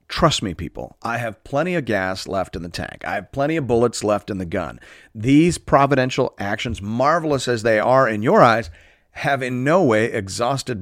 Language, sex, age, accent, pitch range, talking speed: English, male, 40-59, American, 95-130 Hz, 200 wpm